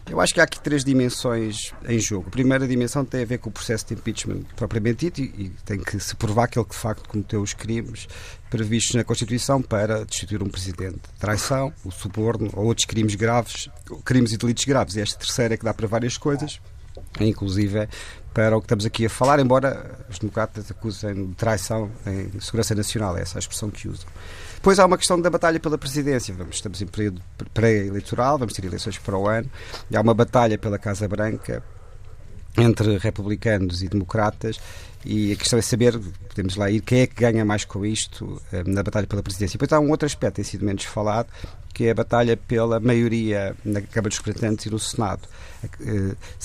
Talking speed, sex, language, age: 205 wpm, male, Portuguese, 40-59